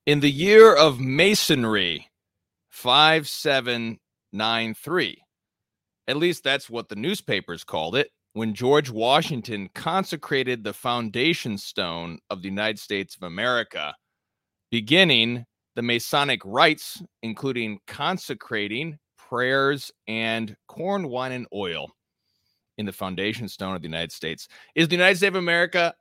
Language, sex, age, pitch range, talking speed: English, male, 30-49, 105-155 Hz, 120 wpm